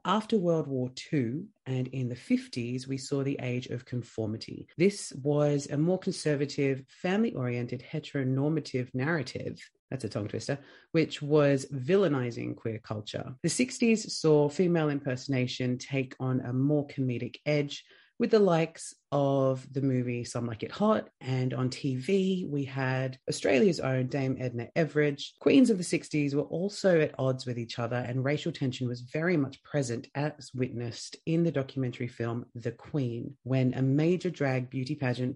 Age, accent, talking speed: 30-49, Australian, 160 wpm